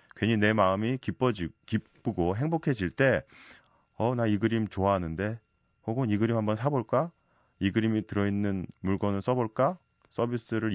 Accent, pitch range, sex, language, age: native, 90-115 Hz, male, Korean, 30-49